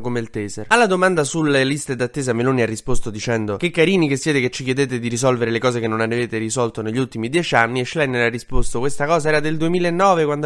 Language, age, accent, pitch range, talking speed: Italian, 20-39, native, 110-145 Hz, 235 wpm